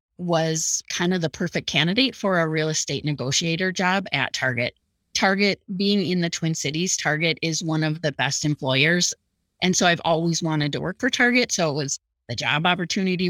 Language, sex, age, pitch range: English, female, 30-49, 160-205 Hz